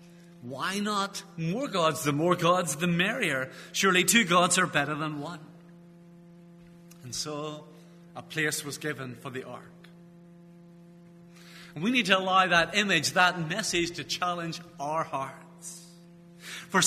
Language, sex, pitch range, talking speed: English, male, 165-190 Hz, 135 wpm